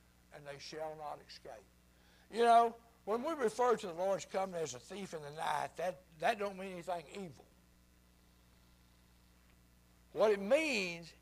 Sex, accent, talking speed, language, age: male, American, 155 wpm, English, 60-79